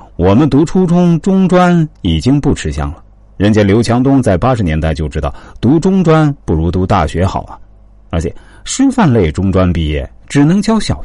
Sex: male